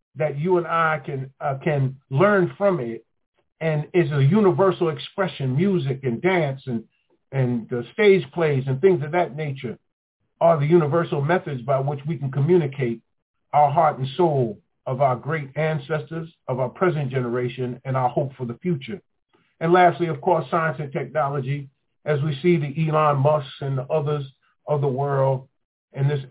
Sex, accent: male, American